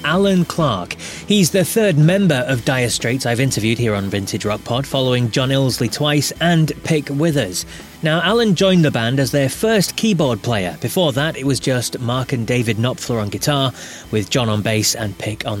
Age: 30-49